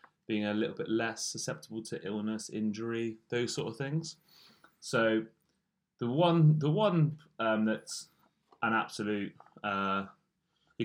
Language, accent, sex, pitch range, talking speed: English, British, male, 100-135 Hz, 120 wpm